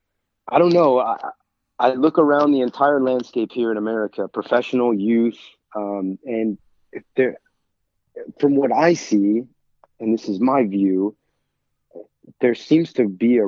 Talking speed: 140 wpm